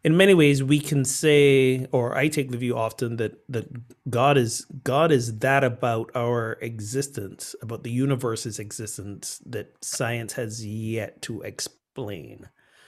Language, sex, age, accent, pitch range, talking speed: English, male, 30-49, American, 105-130 Hz, 150 wpm